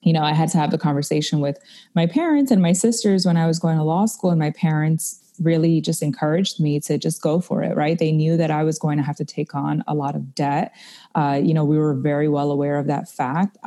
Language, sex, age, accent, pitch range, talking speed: English, female, 20-39, American, 145-180 Hz, 265 wpm